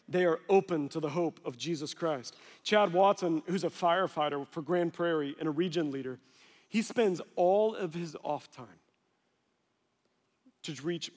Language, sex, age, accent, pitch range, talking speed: English, male, 40-59, American, 165-210 Hz, 160 wpm